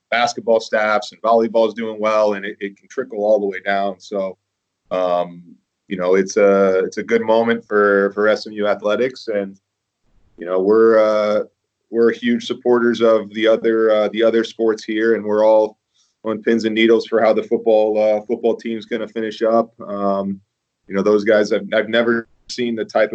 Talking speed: 195 wpm